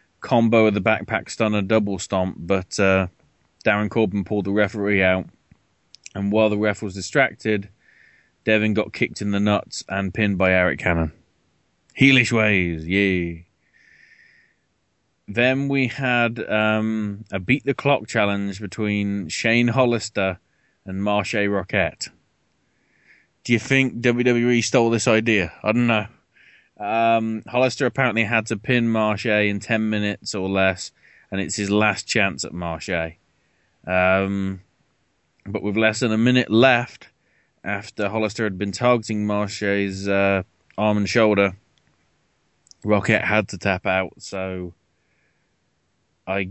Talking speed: 135 wpm